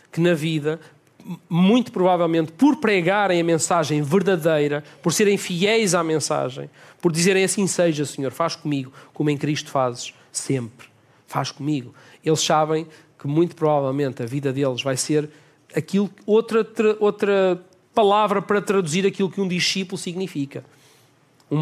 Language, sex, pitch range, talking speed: Portuguese, male, 135-180 Hz, 140 wpm